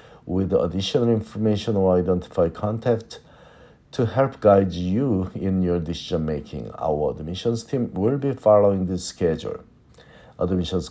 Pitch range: 80-110 Hz